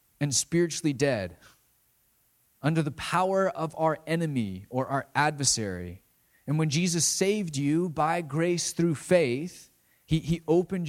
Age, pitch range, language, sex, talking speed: 30-49, 125-170 Hz, English, male, 130 wpm